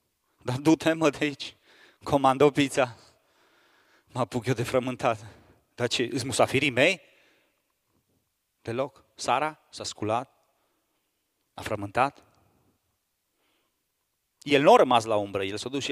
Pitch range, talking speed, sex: 110-135 Hz, 130 wpm, male